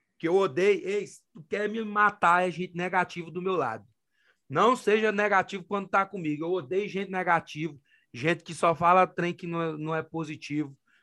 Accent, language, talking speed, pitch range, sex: Brazilian, English, 195 wpm, 165-215 Hz, male